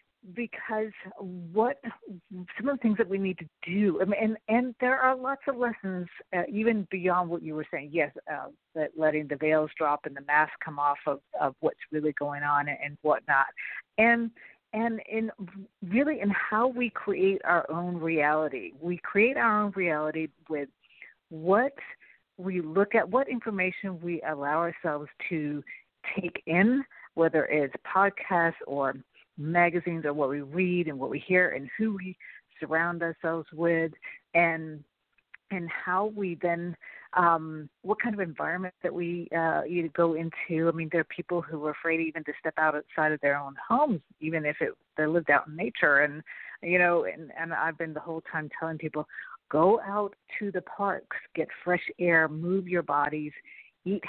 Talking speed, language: 180 wpm, English